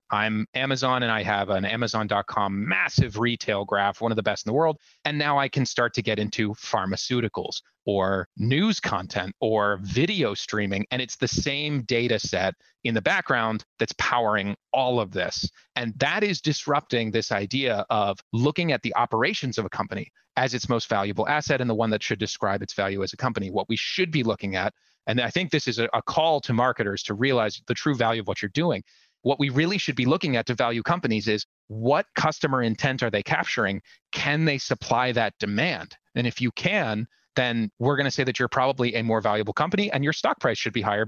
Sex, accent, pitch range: male, American, 110-145 Hz